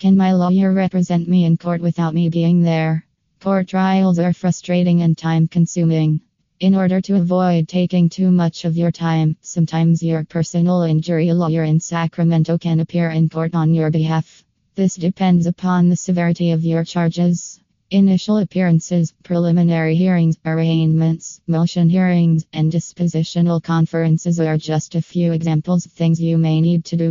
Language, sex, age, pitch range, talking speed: English, female, 20-39, 165-175 Hz, 155 wpm